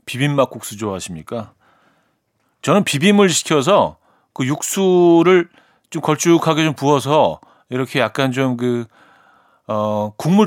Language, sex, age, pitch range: Korean, male, 40-59, 120-175 Hz